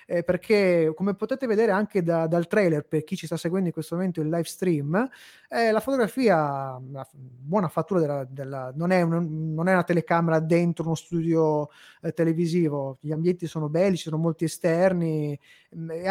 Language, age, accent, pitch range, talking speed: Italian, 20-39, native, 155-190 Hz, 180 wpm